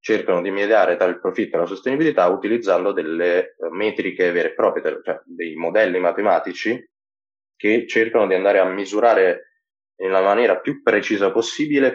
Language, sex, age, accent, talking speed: Italian, male, 20-39, native, 150 wpm